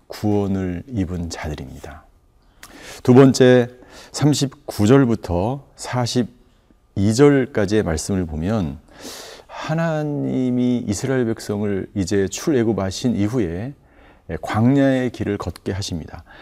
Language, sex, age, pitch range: Korean, male, 40-59, 95-125 Hz